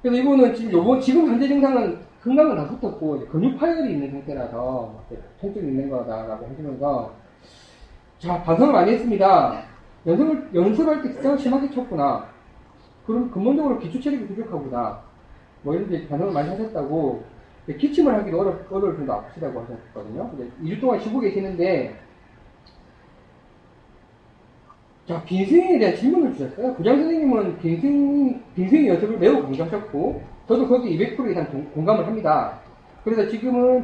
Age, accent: 30-49, native